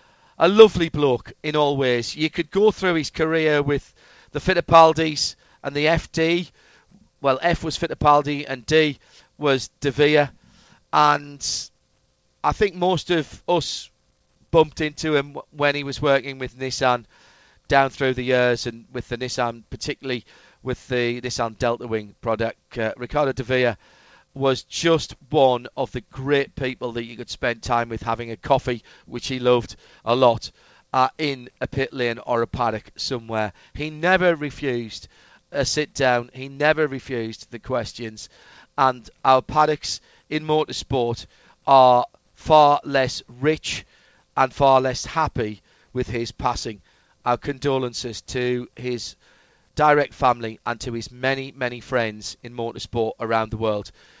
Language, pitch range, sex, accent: English, 120-145 Hz, male, British